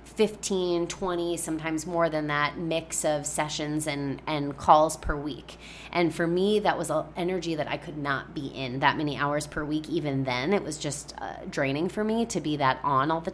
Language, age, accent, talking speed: English, 20-39, American, 205 wpm